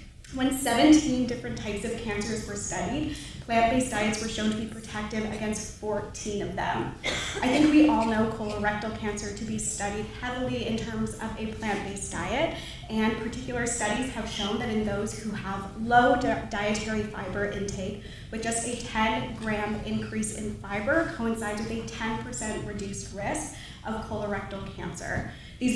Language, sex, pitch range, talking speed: English, female, 210-235 Hz, 155 wpm